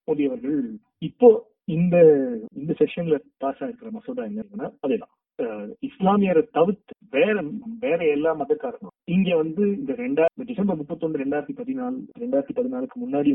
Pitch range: 165-245 Hz